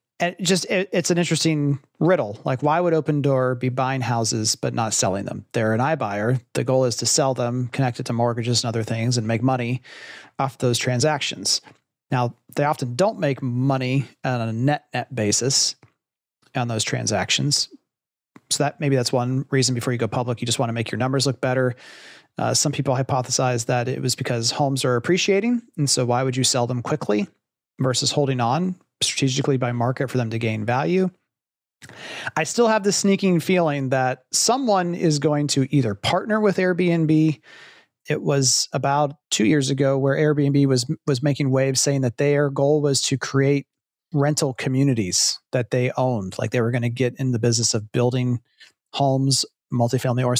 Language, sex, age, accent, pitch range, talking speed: English, male, 30-49, American, 125-145 Hz, 185 wpm